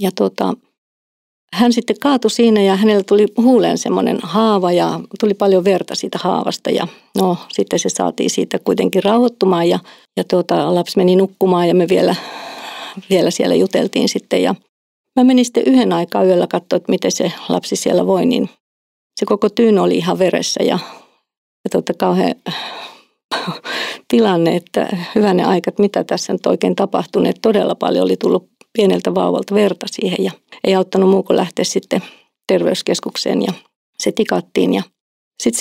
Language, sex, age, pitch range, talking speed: Finnish, female, 50-69, 190-230 Hz, 160 wpm